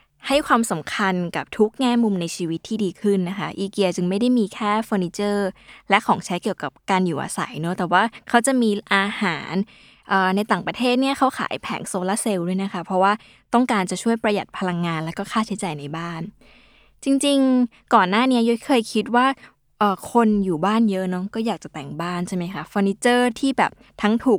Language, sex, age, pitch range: Thai, female, 20-39, 180-230 Hz